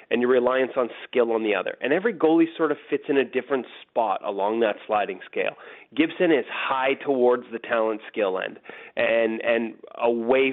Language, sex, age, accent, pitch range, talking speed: English, male, 30-49, American, 135-205 Hz, 190 wpm